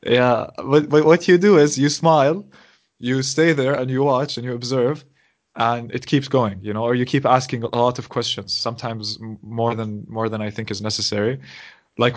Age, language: 20-39, English